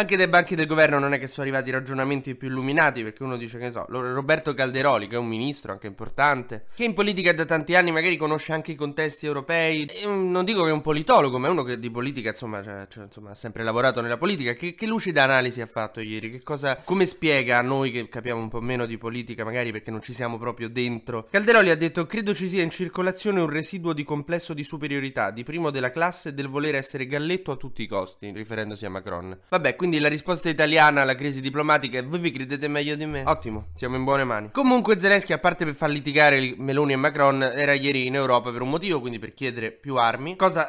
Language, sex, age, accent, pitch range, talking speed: Italian, male, 20-39, native, 120-155 Hz, 240 wpm